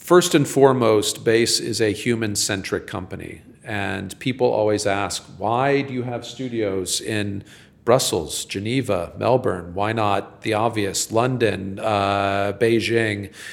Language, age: English, 40-59